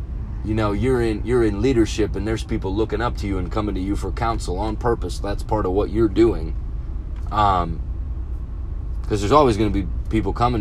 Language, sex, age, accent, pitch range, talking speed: English, male, 30-49, American, 70-110 Hz, 210 wpm